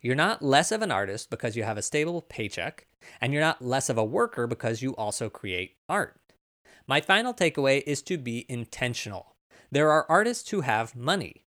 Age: 20-39